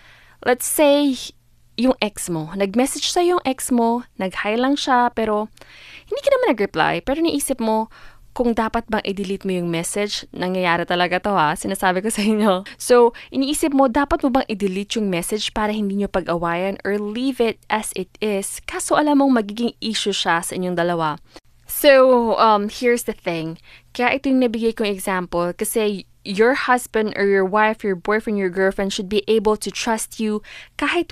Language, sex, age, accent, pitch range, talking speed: English, female, 20-39, Filipino, 190-250 Hz, 175 wpm